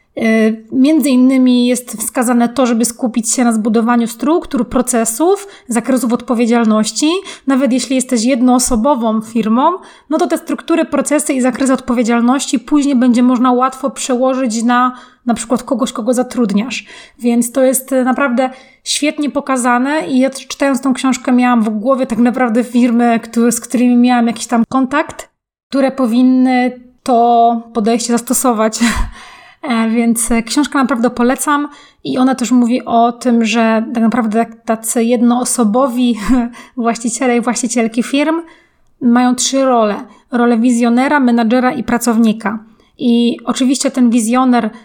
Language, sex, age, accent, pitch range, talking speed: Polish, female, 20-39, native, 235-265 Hz, 130 wpm